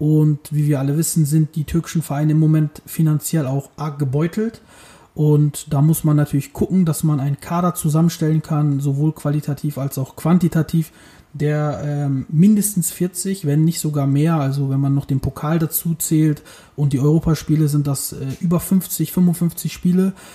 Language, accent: German, German